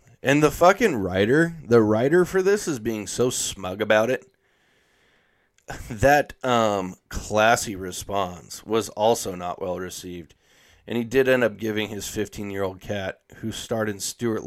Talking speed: 160 wpm